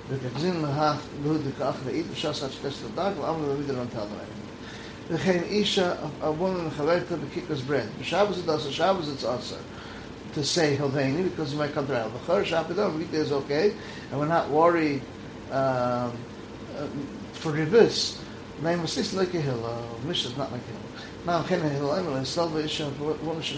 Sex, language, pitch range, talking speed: male, English, 140-170 Hz, 95 wpm